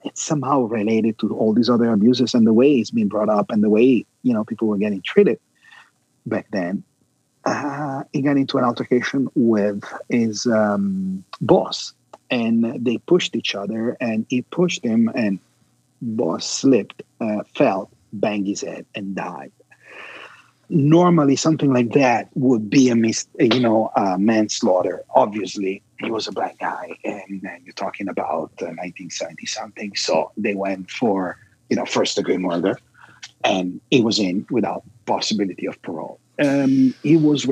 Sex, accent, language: male, Italian, English